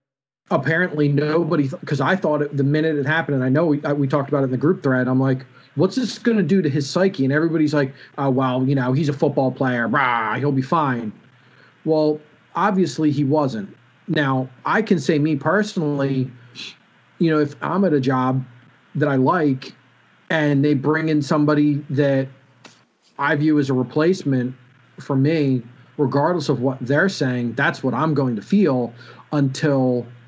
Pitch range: 130-155 Hz